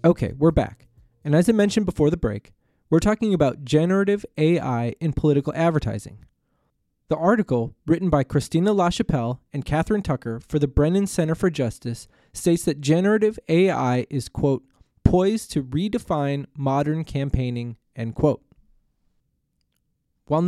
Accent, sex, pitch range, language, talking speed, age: American, male, 130-175 Hz, English, 140 wpm, 20-39